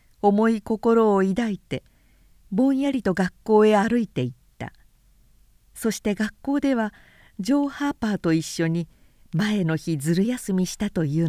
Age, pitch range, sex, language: 50-69, 170-225 Hz, female, Japanese